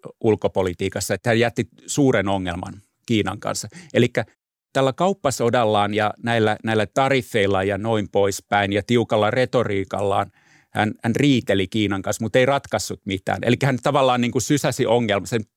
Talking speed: 135 wpm